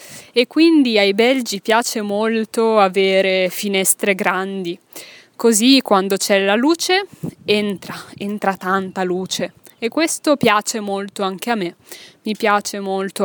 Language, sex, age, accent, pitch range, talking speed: Italian, female, 20-39, native, 190-235 Hz, 125 wpm